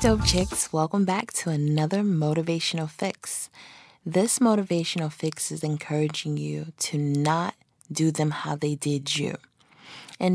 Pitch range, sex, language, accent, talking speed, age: 150-190 Hz, female, English, American, 135 wpm, 20-39